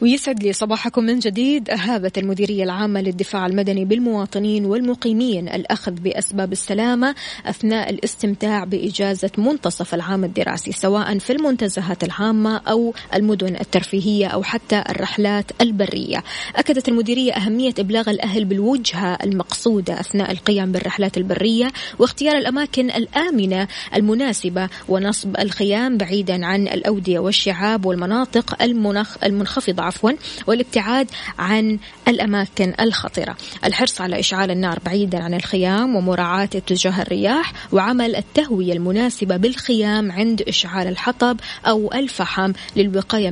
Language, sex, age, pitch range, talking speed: Arabic, female, 20-39, 190-230 Hz, 110 wpm